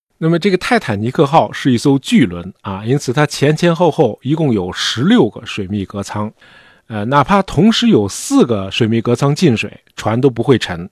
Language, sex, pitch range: Chinese, male, 115-160 Hz